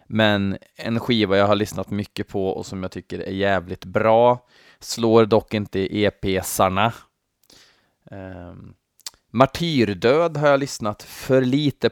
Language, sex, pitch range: Swedish, male, 95-115 Hz